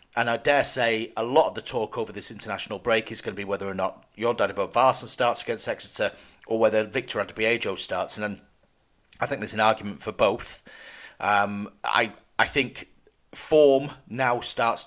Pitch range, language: 105-130 Hz, English